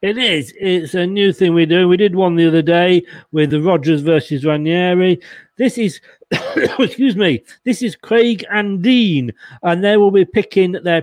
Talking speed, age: 185 wpm, 40-59